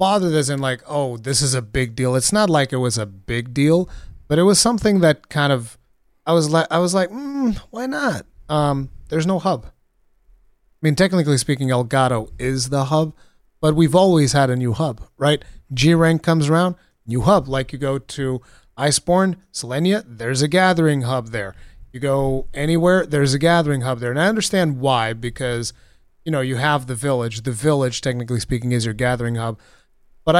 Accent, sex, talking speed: American, male, 195 wpm